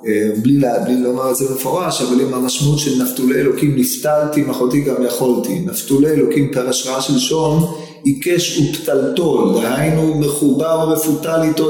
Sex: male